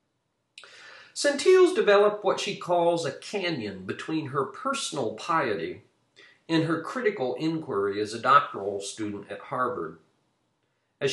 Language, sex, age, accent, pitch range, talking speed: English, male, 50-69, American, 140-225 Hz, 120 wpm